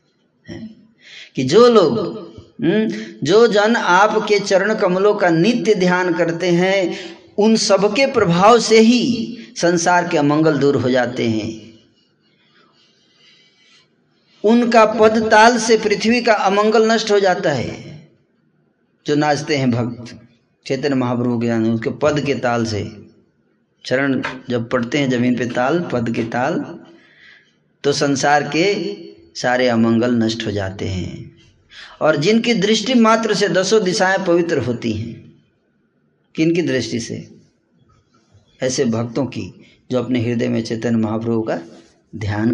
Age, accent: 20-39, native